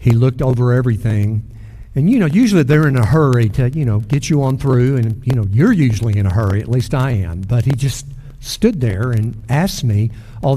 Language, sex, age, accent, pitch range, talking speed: English, male, 60-79, American, 115-140 Hz, 225 wpm